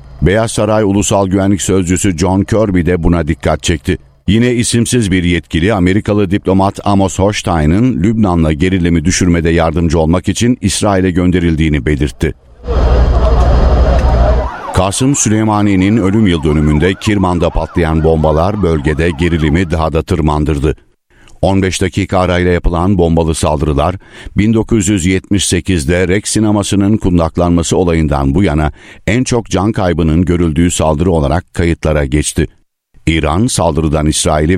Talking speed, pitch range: 115 wpm, 80-100 Hz